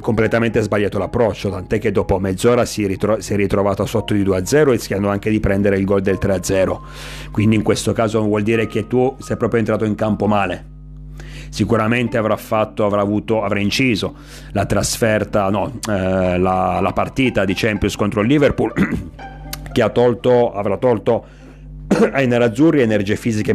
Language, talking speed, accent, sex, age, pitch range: Italian, 165 wpm, native, male, 30-49, 100-125 Hz